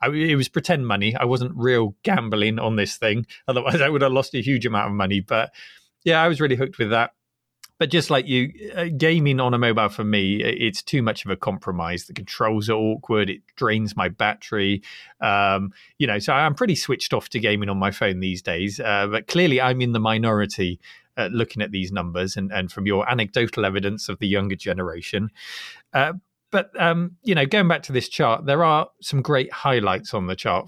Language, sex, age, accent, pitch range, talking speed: English, male, 30-49, British, 100-140 Hz, 215 wpm